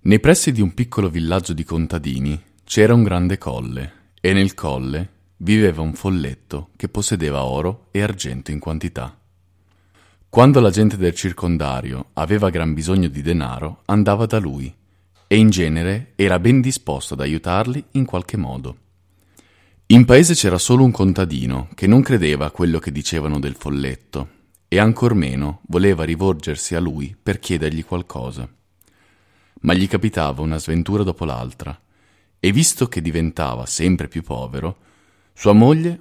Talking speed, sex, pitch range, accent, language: 150 wpm, male, 80-105 Hz, native, Italian